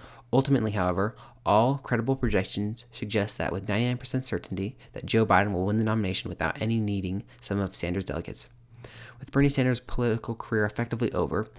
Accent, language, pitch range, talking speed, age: American, English, 100-120 Hz, 160 wpm, 30-49